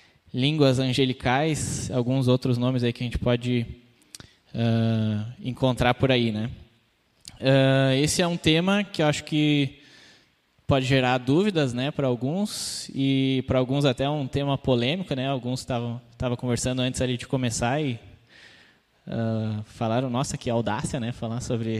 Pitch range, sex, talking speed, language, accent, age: 125-160 Hz, male, 150 wpm, Portuguese, Brazilian, 10-29